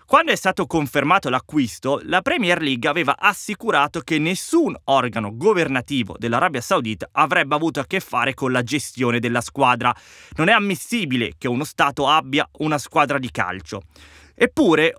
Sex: male